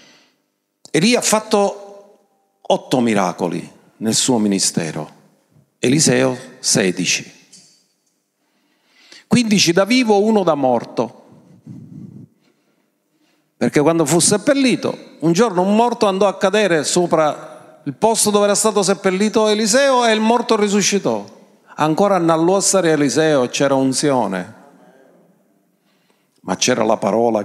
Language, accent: Italian, native